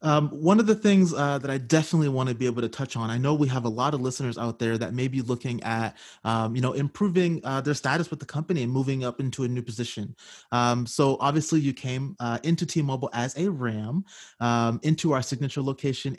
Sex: male